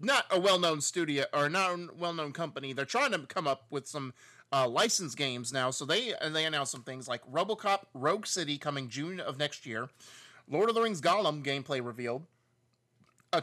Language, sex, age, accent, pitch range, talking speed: English, male, 30-49, American, 140-195 Hz, 190 wpm